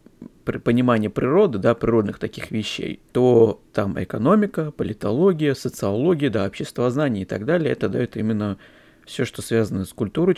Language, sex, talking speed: Russian, male, 145 wpm